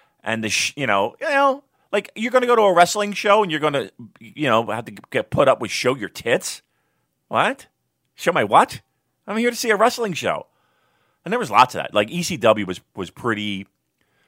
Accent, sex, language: American, male, English